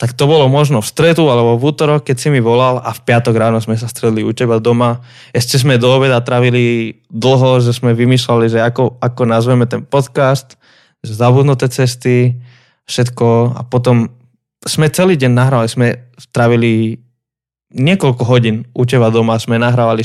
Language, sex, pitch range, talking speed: Slovak, male, 120-135 Hz, 170 wpm